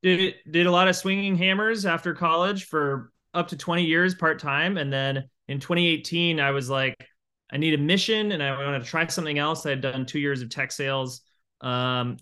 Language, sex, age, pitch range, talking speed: English, male, 20-39, 130-160 Hz, 205 wpm